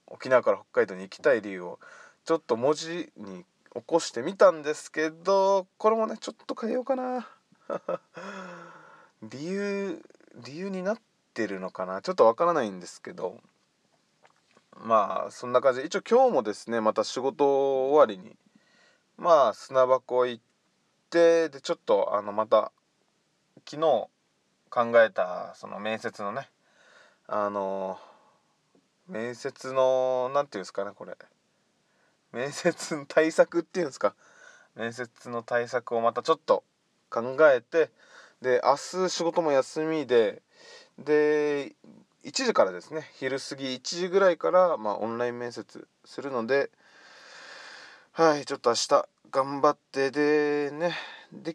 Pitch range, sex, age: 125-180 Hz, male, 20-39